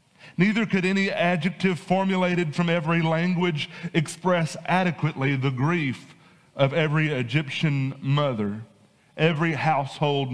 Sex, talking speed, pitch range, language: male, 105 wpm, 145-180 Hz, English